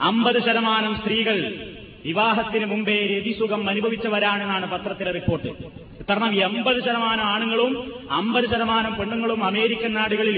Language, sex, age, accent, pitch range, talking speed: Malayalam, male, 30-49, native, 205-245 Hz, 110 wpm